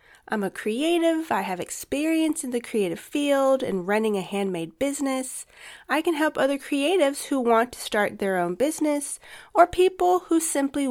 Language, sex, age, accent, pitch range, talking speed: English, female, 30-49, American, 215-290 Hz, 170 wpm